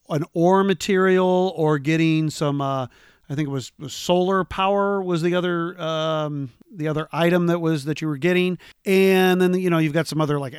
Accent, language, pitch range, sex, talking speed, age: American, English, 150-185 Hz, male, 200 wpm, 40-59